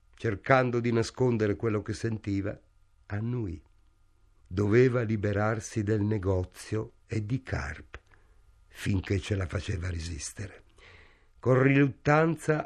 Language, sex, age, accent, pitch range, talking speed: Italian, male, 50-69, native, 100-130 Hz, 100 wpm